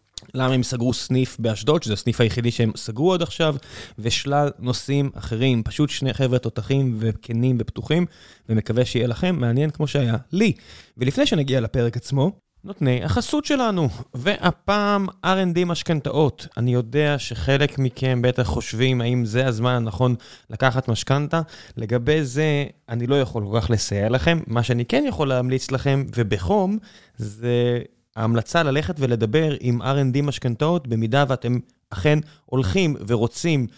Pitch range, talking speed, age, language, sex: 115-145 Hz, 135 wpm, 20-39, Hebrew, male